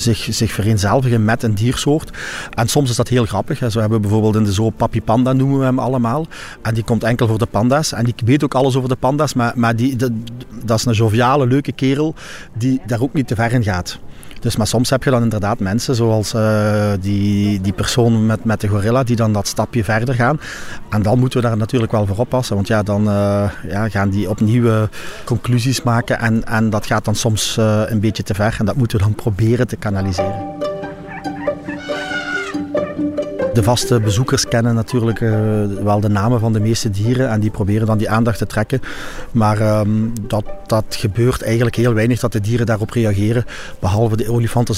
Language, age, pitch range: Dutch, 40-59, 105-120 Hz